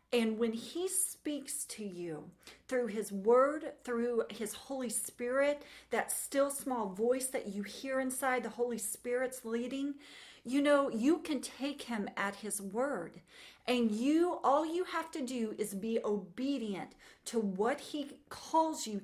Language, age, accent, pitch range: English, 40-59, American, 215-285 Hz